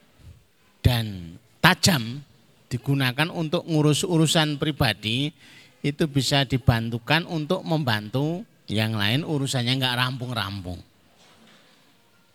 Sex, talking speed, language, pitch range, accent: male, 85 wpm, Indonesian, 105-145 Hz, native